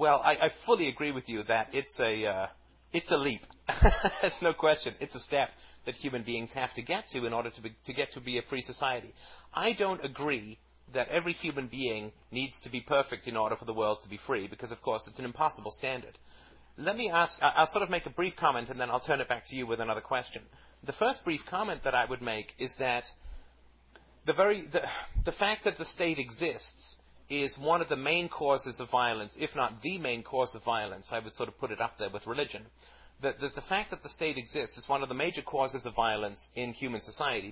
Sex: male